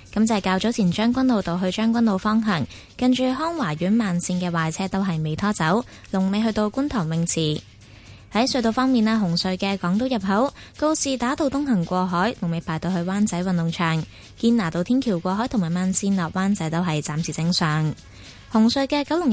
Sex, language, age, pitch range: female, Chinese, 20-39, 170-230 Hz